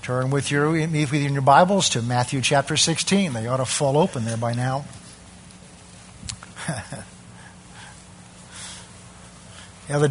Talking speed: 125 wpm